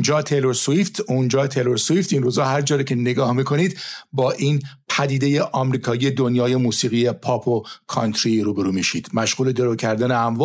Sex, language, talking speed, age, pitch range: male, Persian, 170 wpm, 50-69, 120-150 Hz